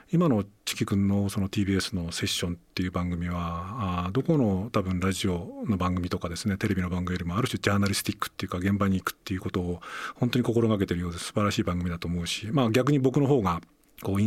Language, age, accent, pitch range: Japanese, 40-59, native, 90-120 Hz